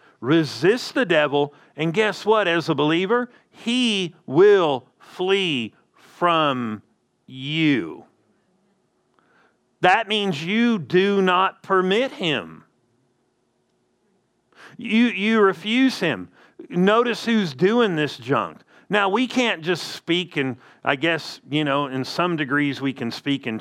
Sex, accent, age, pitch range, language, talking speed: male, American, 50-69, 140-185 Hz, English, 120 wpm